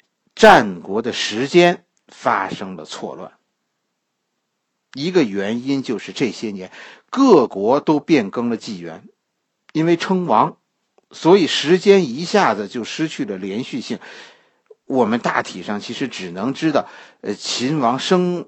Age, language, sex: 50-69, Chinese, male